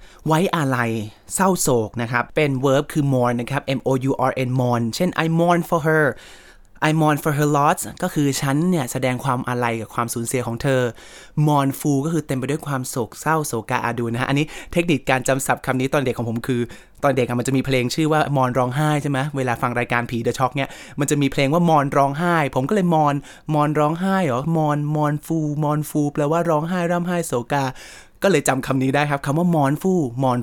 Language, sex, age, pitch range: Thai, male, 20-39, 130-155 Hz